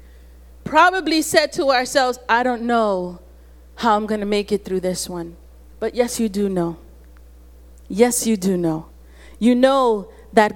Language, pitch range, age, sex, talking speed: English, 170-255 Hz, 30-49, female, 155 wpm